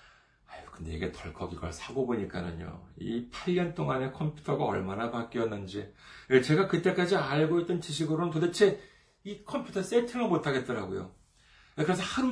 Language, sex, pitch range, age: Korean, male, 125-180 Hz, 40-59